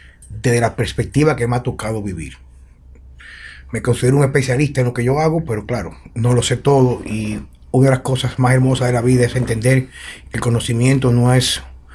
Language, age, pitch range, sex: Spanish, 30-49, 100-155 Hz, male